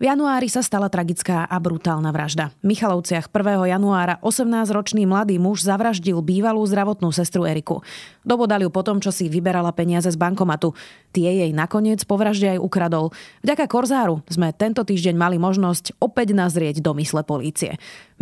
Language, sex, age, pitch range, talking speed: Slovak, female, 30-49, 170-215 Hz, 160 wpm